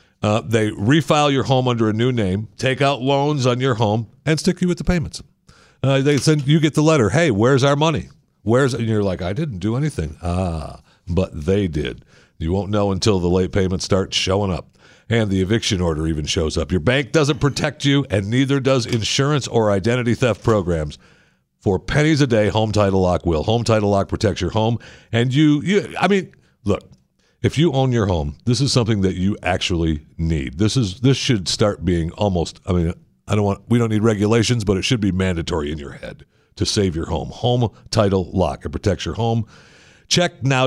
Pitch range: 95-130 Hz